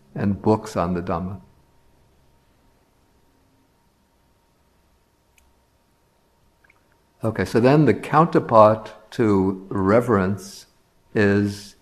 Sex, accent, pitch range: male, American, 95-110 Hz